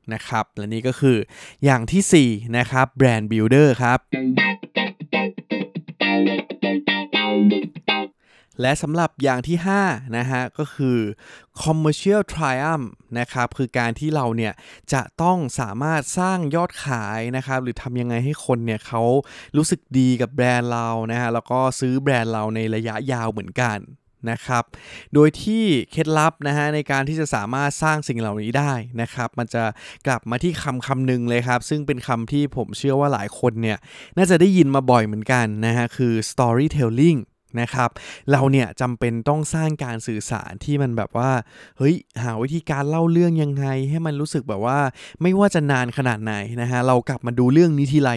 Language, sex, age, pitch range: Thai, male, 20-39, 115-145 Hz